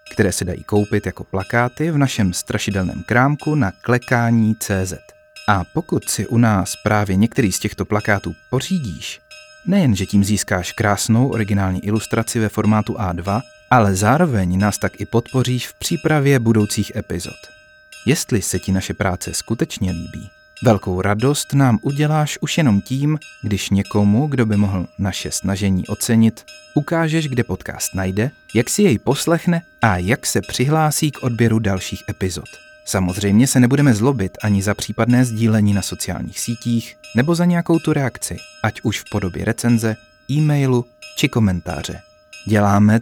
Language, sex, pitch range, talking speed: Czech, male, 100-140 Hz, 145 wpm